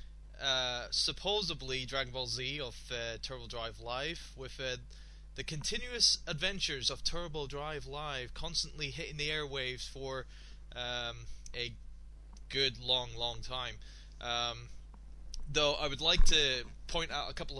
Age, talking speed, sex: 20-39, 135 wpm, male